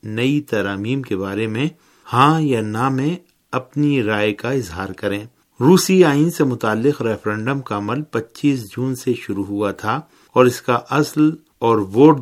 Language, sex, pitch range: Urdu, male, 105-150 Hz